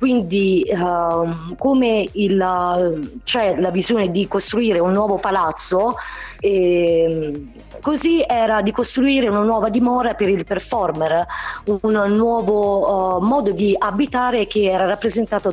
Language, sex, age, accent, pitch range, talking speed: Italian, female, 30-49, native, 180-230 Hz, 125 wpm